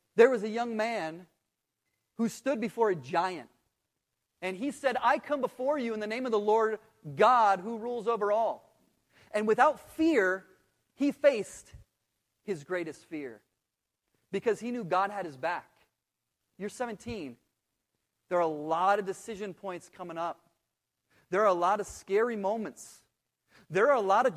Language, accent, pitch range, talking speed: English, American, 165-225 Hz, 165 wpm